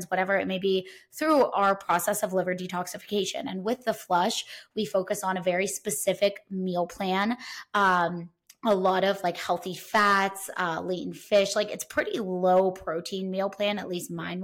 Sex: female